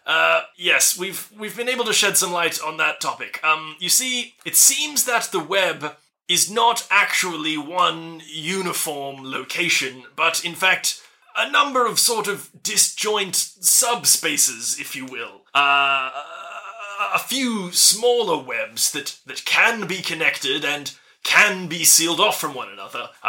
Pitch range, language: 155-210 Hz, English